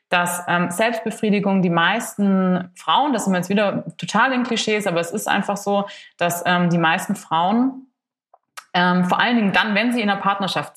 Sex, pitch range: female, 180-215 Hz